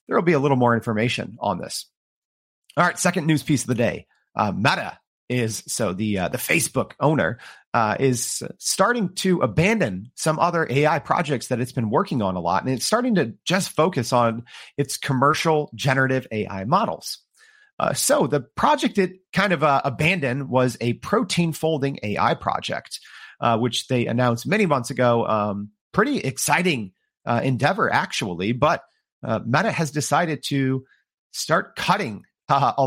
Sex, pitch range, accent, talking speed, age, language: male, 115-155 Hz, American, 165 wpm, 40-59, English